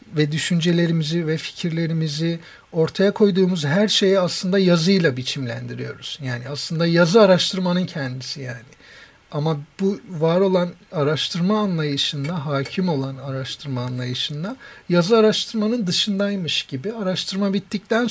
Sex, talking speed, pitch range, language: male, 110 wpm, 140-185 Hz, Turkish